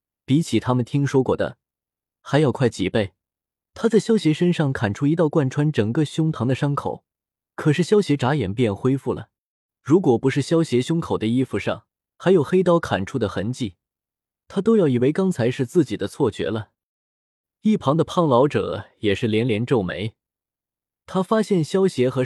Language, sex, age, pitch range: Chinese, male, 20-39, 120-170 Hz